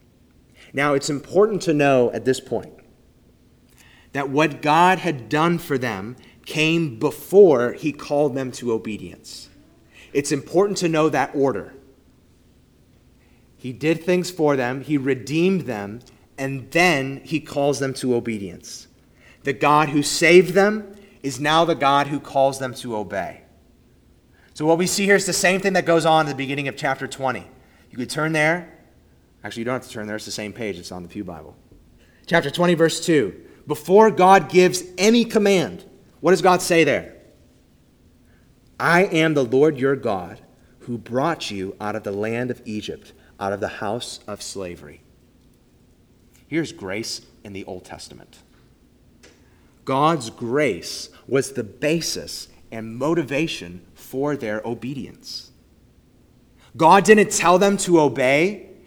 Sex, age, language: male, 30-49, English